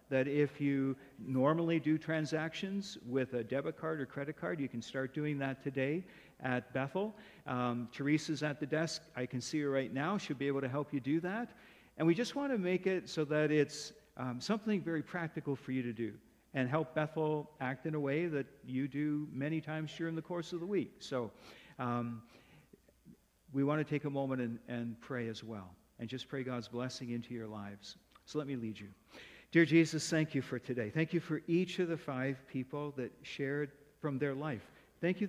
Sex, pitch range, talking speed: male, 130-160 Hz, 210 wpm